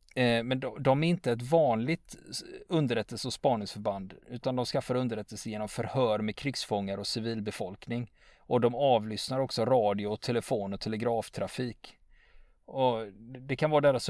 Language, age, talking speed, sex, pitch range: Swedish, 30-49, 135 wpm, male, 110-130 Hz